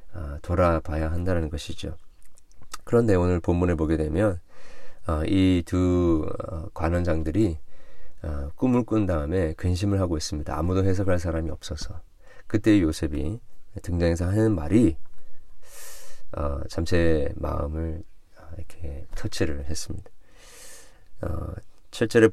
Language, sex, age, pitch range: Korean, male, 40-59, 80-95 Hz